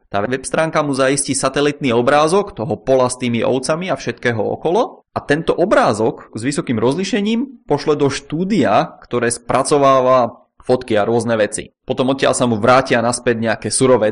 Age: 20-39